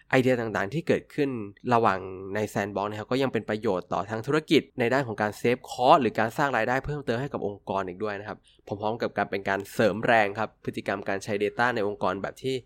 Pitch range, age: 100-130 Hz, 20-39